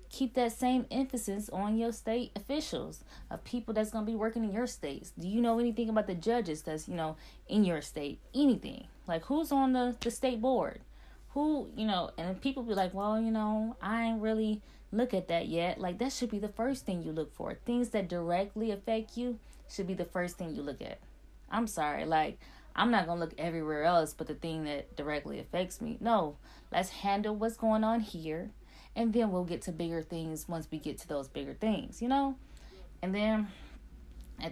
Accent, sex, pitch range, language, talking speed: American, female, 160-225 Hz, English, 210 wpm